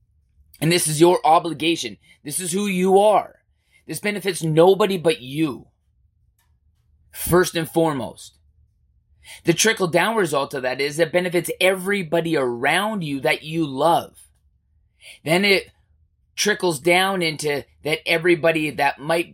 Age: 20-39